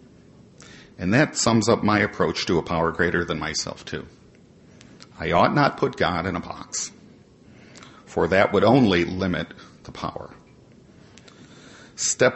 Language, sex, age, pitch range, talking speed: English, male, 50-69, 90-110 Hz, 140 wpm